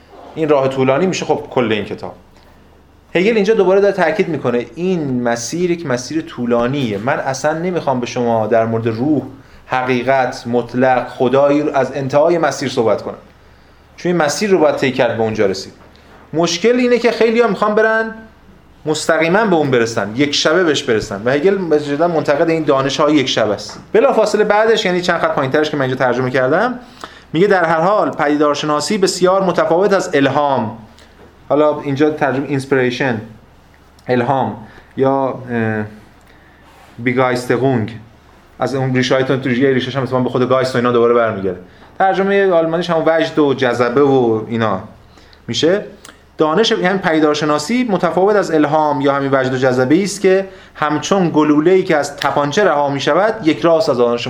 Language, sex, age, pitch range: Persian, male, 30-49, 125-165 Hz